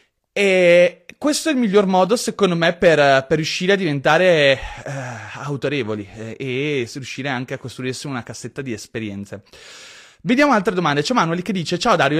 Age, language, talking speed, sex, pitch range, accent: 30-49, Italian, 165 wpm, male, 140-185 Hz, native